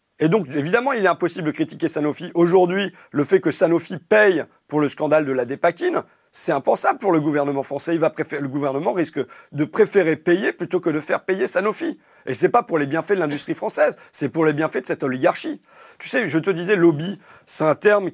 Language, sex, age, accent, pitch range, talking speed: French, male, 40-59, French, 150-190 Hz, 225 wpm